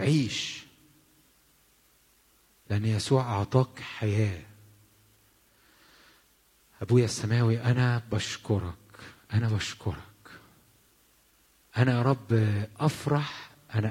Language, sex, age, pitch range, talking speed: English, male, 50-69, 105-130 Hz, 65 wpm